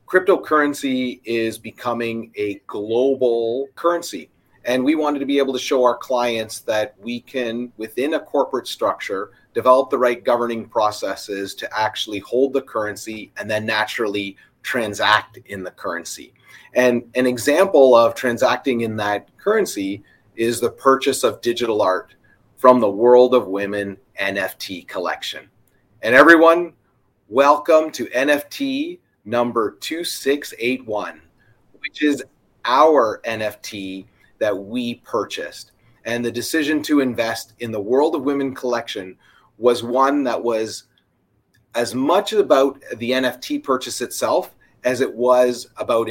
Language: English